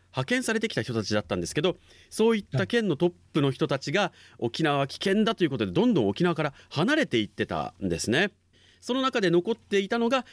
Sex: male